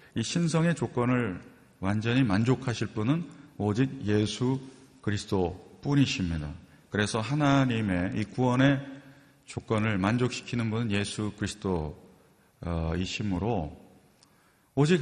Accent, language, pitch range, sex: native, Korean, 95-130 Hz, male